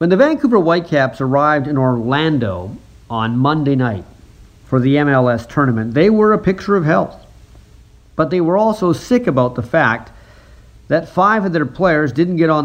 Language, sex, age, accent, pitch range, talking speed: English, male, 50-69, American, 120-160 Hz, 170 wpm